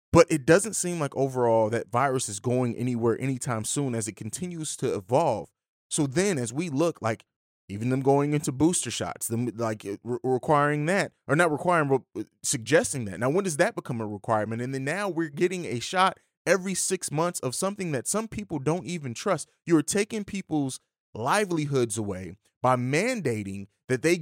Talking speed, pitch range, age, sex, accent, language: 185 wpm, 120-170 Hz, 30-49, male, American, English